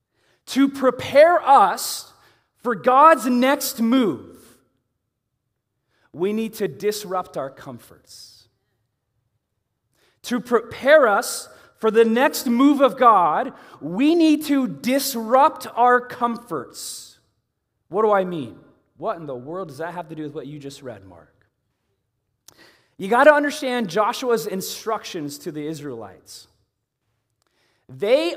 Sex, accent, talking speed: male, American, 120 wpm